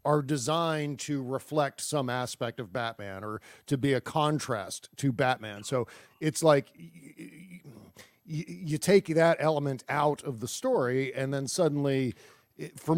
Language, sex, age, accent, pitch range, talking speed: English, male, 40-59, American, 125-155 Hz, 140 wpm